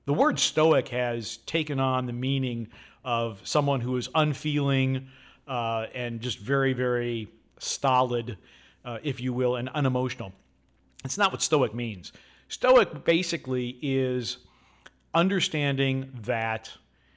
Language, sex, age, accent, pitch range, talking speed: English, male, 50-69, American, 120-145 Hz, 120 wpm